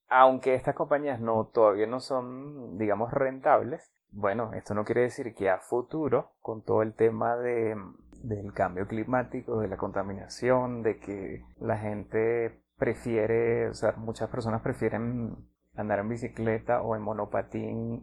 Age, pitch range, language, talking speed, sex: 30-49, 105-120 Hz, Spanish, 145 wpm, male